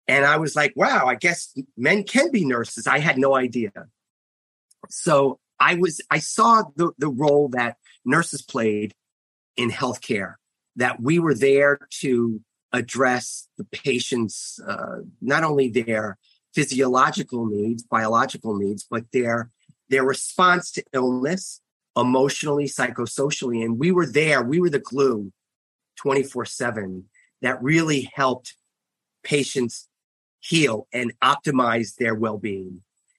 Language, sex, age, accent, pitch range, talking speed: English, male, 30-49, American, 115-145 Hz, 125 wpm